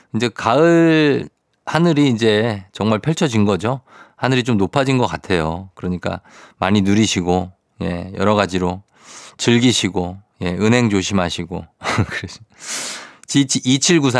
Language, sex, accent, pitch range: Korean, male, native, 95-130 Hz